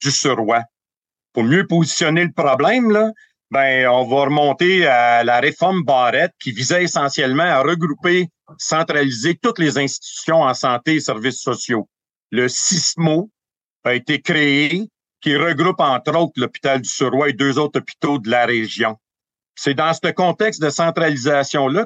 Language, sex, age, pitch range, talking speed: French, male, 50-69, 130-175 Hz, 150 wpm